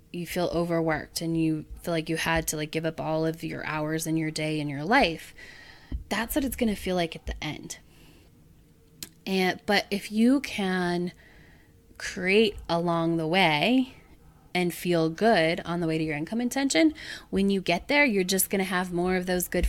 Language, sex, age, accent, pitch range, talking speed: English, female, 20-39, American, 160-190 Hz, 200 wpm